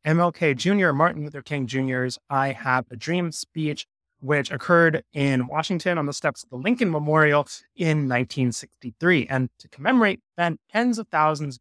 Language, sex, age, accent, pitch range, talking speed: English, male, 20-39, American, 120-155 Hz, 160 wpm